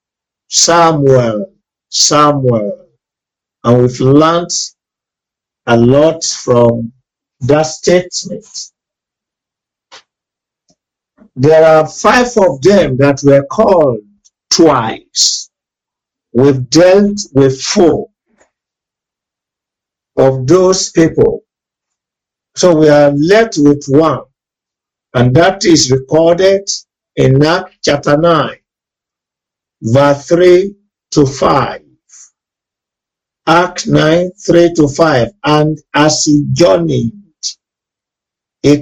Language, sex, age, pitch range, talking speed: English, male, 50-69, 140-185 Hz, 85 wpm